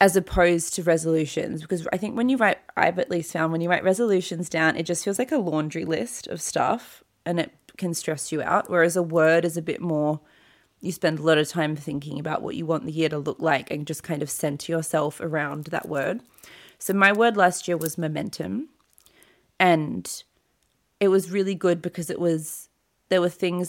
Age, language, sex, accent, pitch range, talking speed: 20-39, English, female, Australian, 155-180 Hz, 215 wpm